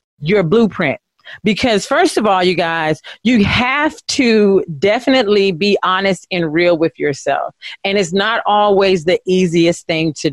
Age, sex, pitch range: 30-49, female, 170-225 Hz